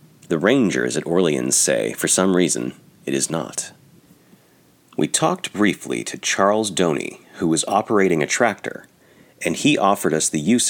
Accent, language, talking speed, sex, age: American, English, 155 wpm, male, 40-59